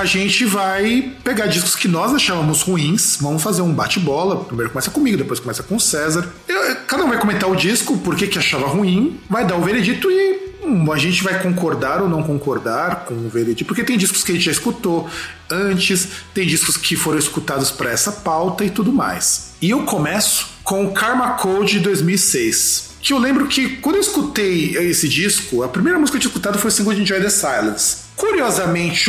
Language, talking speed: Portuguese, 200 wpm